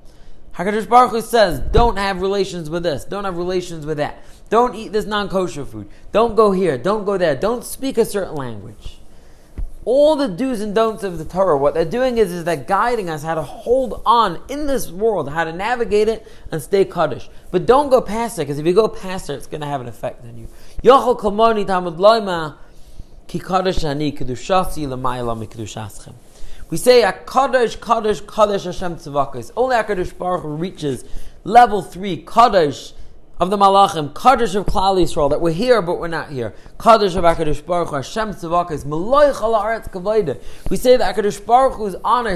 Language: English